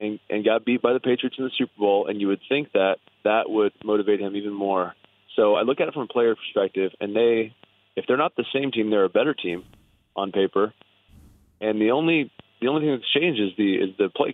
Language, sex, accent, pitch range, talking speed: English, male, American, 100-120 Hz, 245 wpm